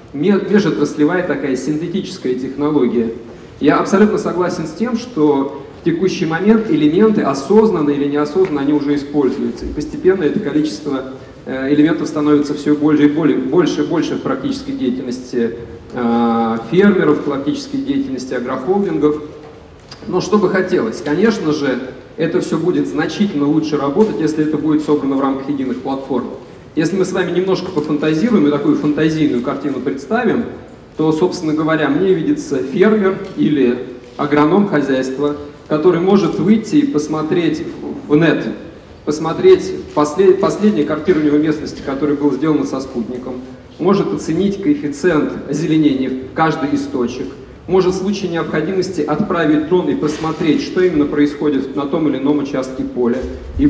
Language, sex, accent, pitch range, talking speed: Russian, male, native, 135-180 Hz, 135 wpm